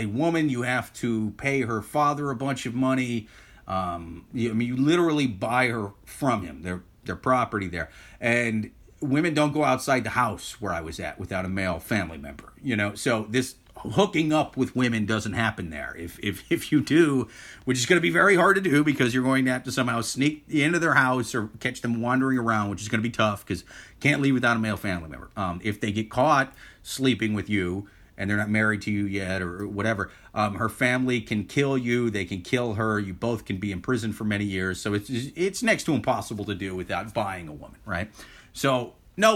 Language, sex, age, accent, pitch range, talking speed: English, male, 30-49, American, 100-130 Hz, 225 wpm